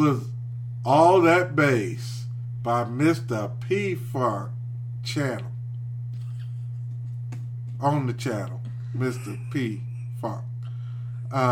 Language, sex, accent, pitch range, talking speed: English, male, American, 120-135 Hz, 85 wpm